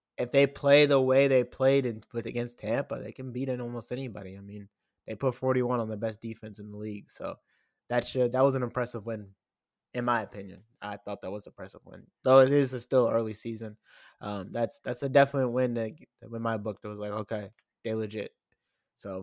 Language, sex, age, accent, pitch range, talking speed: English, male, 20-39, American, 115-140 Hz, 220 wpm